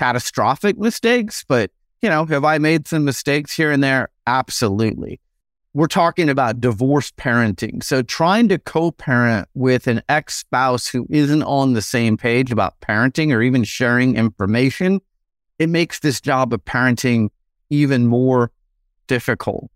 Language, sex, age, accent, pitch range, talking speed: English, male, 30-49, American, 120-150 Hz, 145 wpm